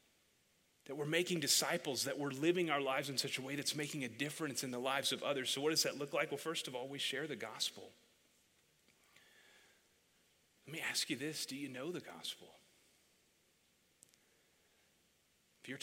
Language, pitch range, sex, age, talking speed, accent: English, 115-145 Hz, male, 30-49, 180 wpm, American